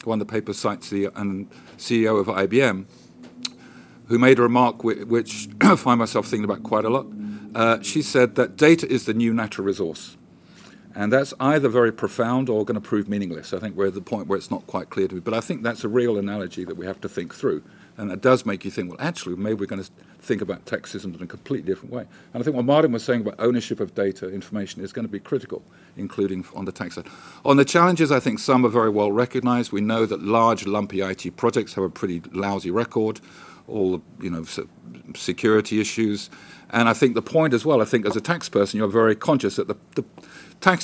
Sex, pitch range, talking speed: male, 100-125 Hz, 235 wpm